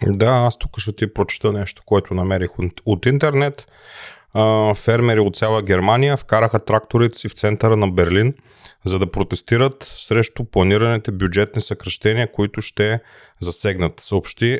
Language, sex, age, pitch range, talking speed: Bulgarian, male, 30-49, 100-120 Hz, 130 wpm